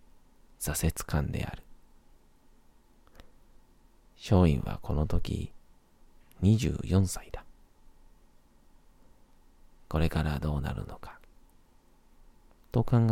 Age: 40-59